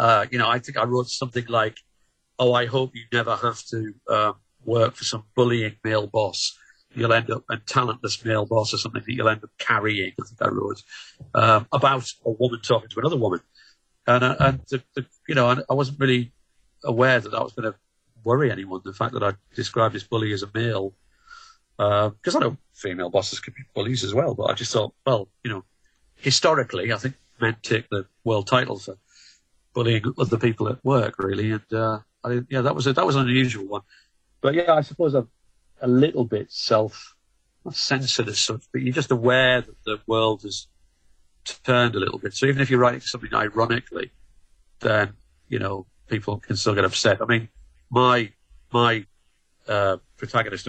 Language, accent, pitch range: English, British, 105-125 Hz